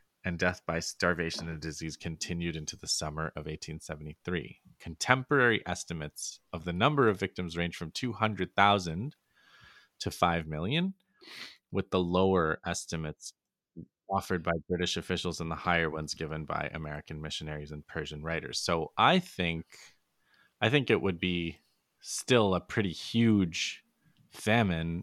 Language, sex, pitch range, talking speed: English, male, 80-100 Hz, 135 wpm